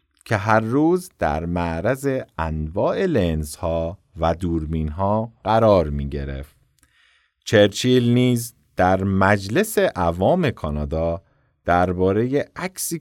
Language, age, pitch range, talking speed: Persian, 50-69, 85-125 Hz, 90 wpm